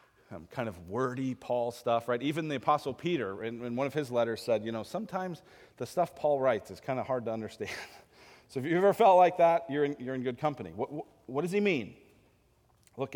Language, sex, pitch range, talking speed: English, male, 115-155 Hz, 230 wpm